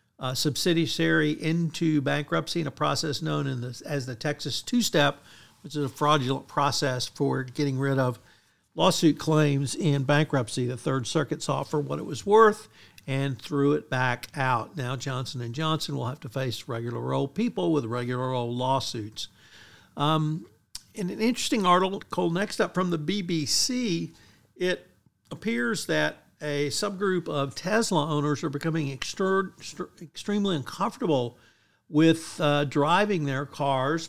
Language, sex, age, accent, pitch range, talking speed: English, male, 50-69, American, 135-165 Hz, 145 wpm